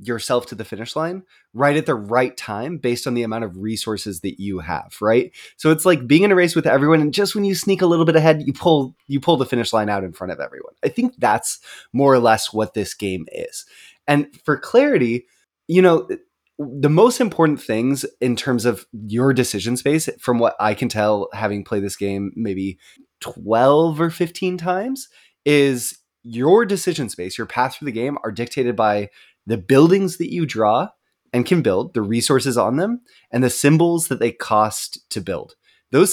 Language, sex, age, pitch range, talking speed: English, male, 20-39, 115-170 Hz, 205 wpm